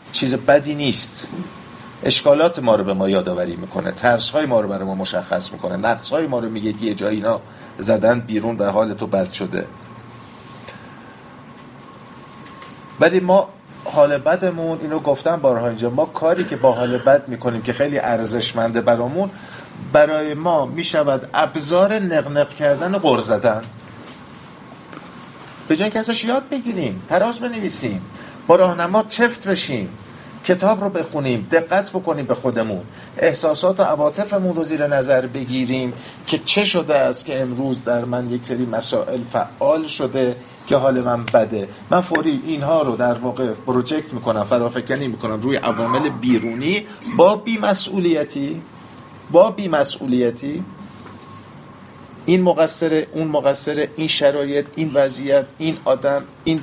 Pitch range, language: 120-170 Hz, Persian